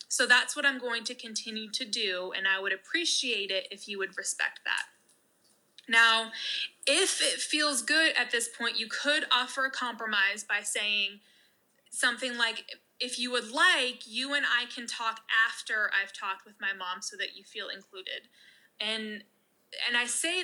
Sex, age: female, 20-39